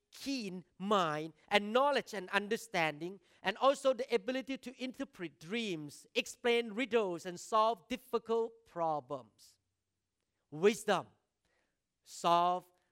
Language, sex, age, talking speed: English, male, 40-59, 100 wpm